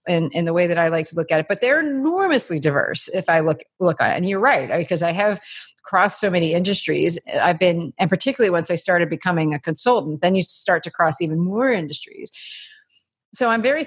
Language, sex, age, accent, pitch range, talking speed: English, female, 30-49, American, 170-210 Hz, 225 wpm